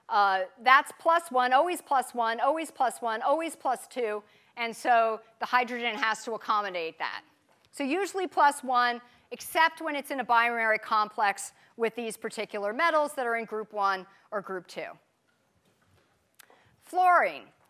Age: 40-59